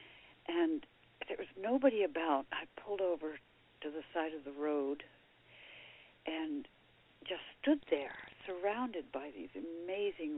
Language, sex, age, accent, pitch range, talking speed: English, female, 60-79, American, 145-175 Hz, 125 wpm